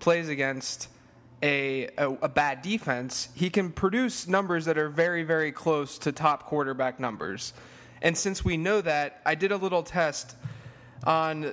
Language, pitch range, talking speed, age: English, 130-160 Hz, 160 wpm, 20-39